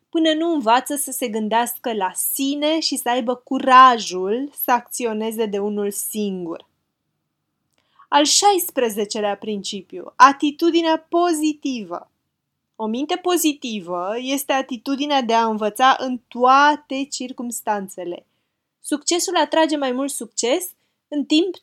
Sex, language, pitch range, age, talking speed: female, Romanian, 220-300 Hz, 20-39, 110 wpm